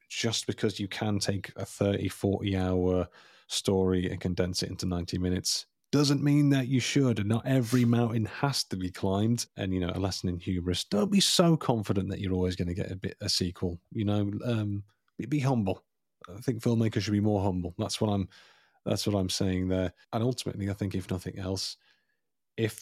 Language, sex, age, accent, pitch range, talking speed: English, male, 30-49, British, 95-115 Hz, 205 wpm